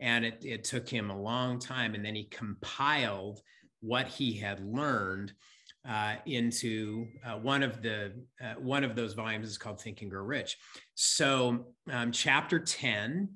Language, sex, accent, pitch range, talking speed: English, male, American, 115-140 Hz, 165 wpm